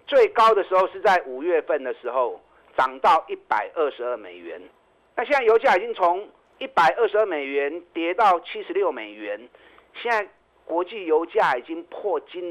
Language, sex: Chinese, male